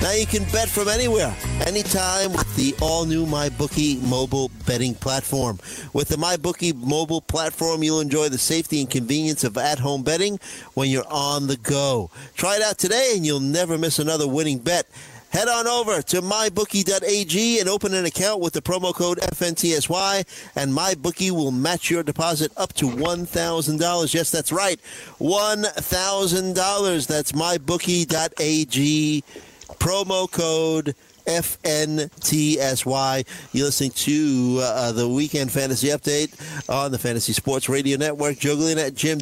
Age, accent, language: 50-69, American, English